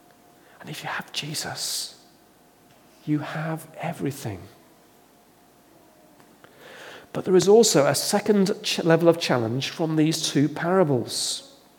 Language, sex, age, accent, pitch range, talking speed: English, male, 40-59, British, 140-180 Hz, 105 wpm